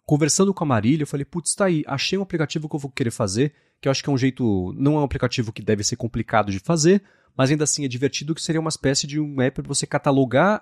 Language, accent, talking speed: Portuguese, Brazilian, 275 wpm